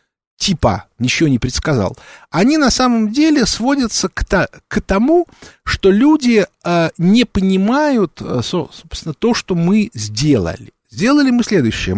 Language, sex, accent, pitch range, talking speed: Russian, male, native, 130-215 Hz, 115 wpm